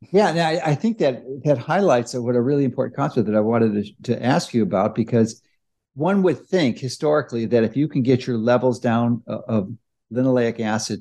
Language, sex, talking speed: English, male, 195 wpm